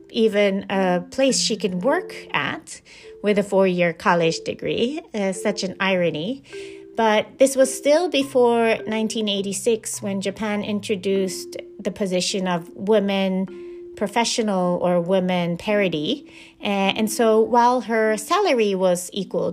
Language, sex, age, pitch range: Japanese, female, 30-49, 180-225 Hz